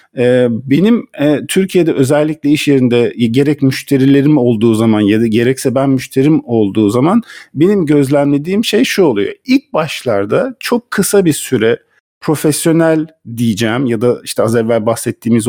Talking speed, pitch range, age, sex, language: 140 wpm, 130-185 Hz, 50-69, male, Turkish